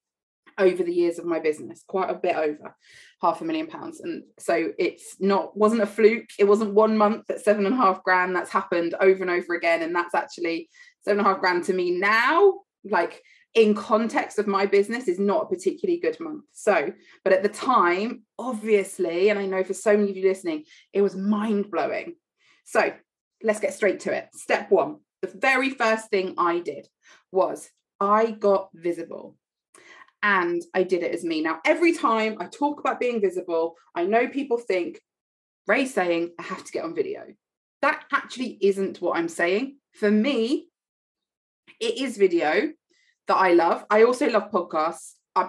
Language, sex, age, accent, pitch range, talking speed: English, female, 20-39, British, 180-255 Hz, 185 wpm